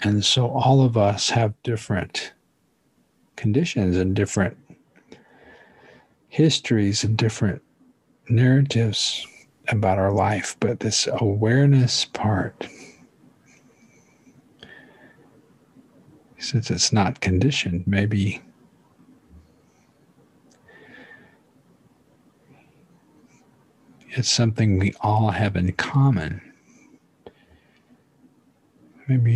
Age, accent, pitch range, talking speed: 50-69, American, 100-120 Hz, 70 wpm